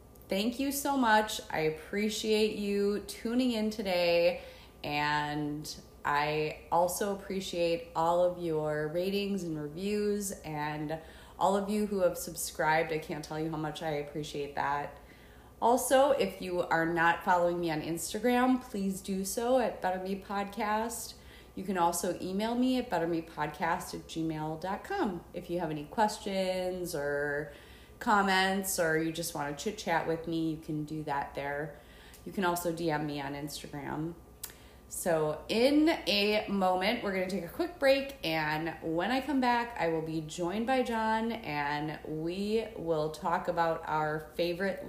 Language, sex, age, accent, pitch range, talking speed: English, female, 30-49, American, 155-215 Hz, 160 wpm